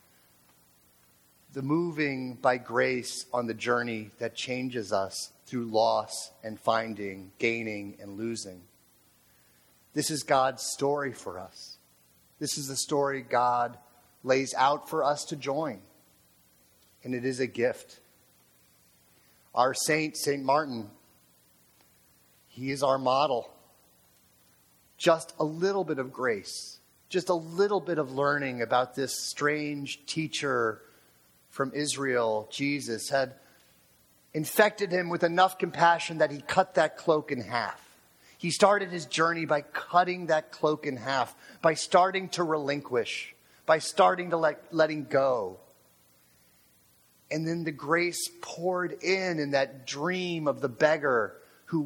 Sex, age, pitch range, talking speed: male, 30-49, 110-165 Hz, 130 wpm